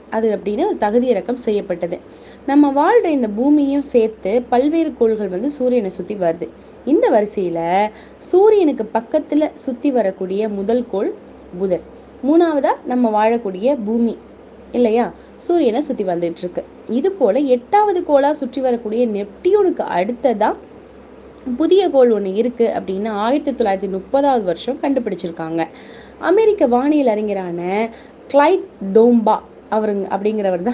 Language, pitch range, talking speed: English, 205-280 Hz, 105 wpm